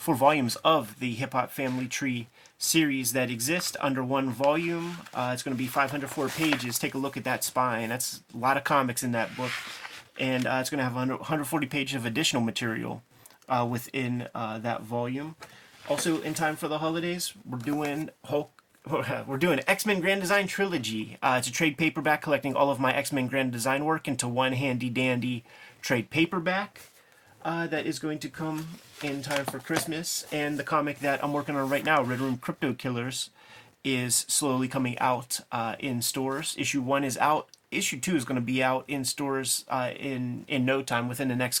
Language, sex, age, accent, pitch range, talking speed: English, male, 30-49, American, 125-150 Hz, 195 wpm